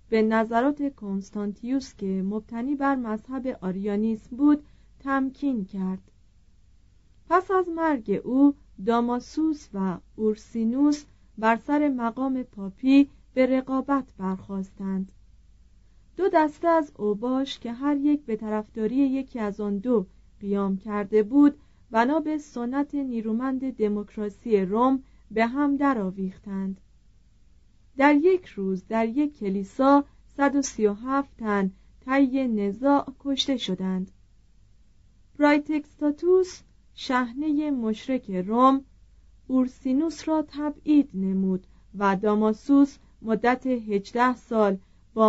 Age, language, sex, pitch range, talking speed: 40-59, Persian, female, 205-275 Hz, 100 wpm